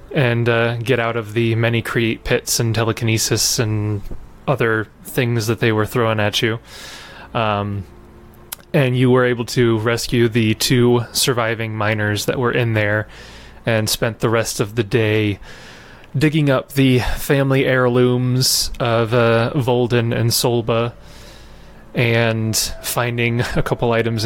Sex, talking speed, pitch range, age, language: male, 140 wpm, 110-125 Hz, 20-39, English